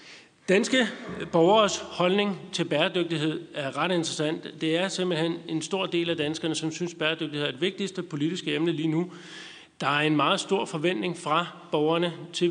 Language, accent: Danish, native